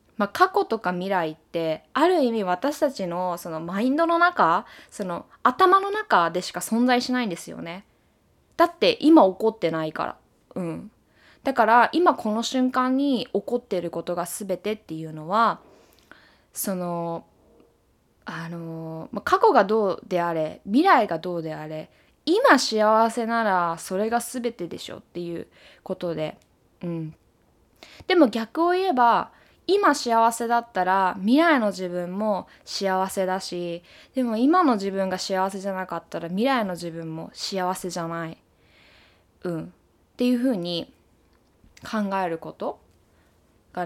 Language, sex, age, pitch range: Japanese, female, 20-39, 170-235 Hz